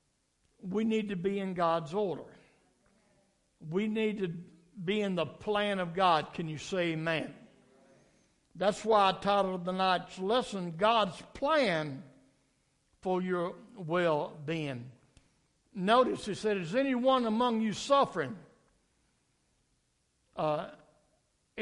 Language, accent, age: English, American, 60-79